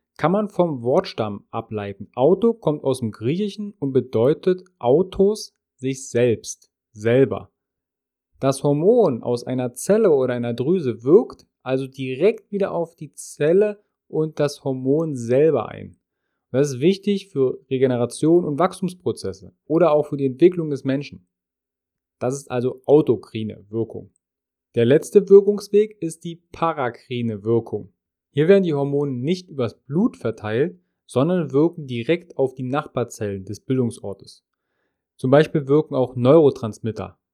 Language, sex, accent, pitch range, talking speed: German, male, German, 115-165 Hz, 135 wpm